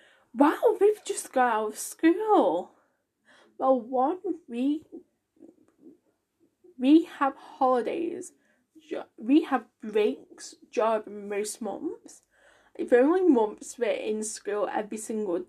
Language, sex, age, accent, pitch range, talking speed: English, female, 10-29, British, 225-315 Hz, 110 wpm